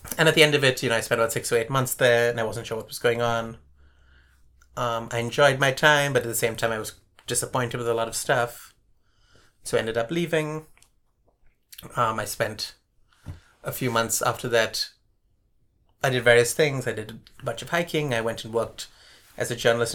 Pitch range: 110-125 Hz